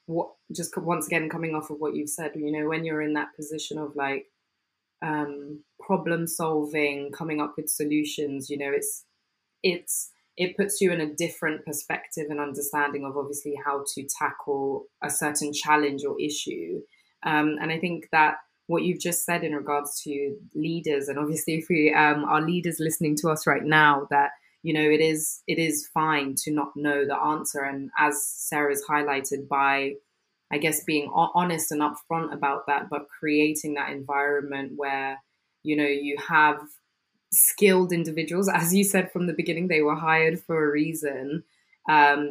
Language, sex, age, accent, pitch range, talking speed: English, female, 20-39, British, 145-160 Hz, 175 wpm